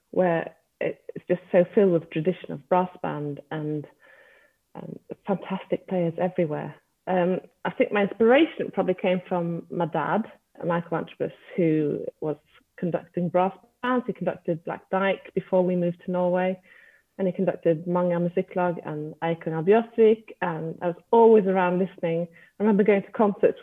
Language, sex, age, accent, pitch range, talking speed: English, female, 30-49, British, 170-200 Hz, 155 wpm